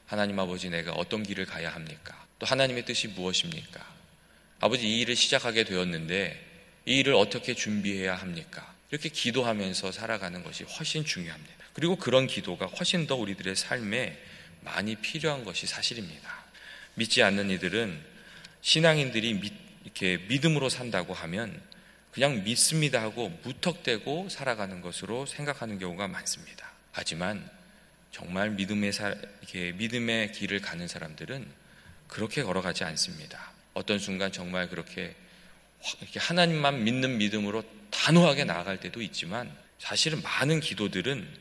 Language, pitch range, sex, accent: Korean, 95-130 Hz, male, native